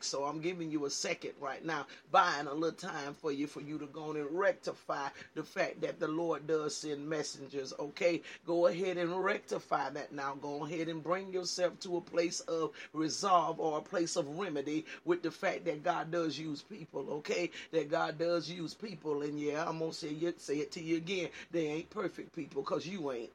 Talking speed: 215 wpm